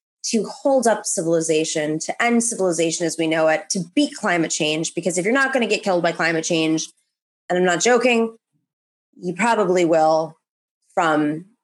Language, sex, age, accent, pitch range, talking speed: English, female, 20-39, American, 165-245 Hz, 170 wpm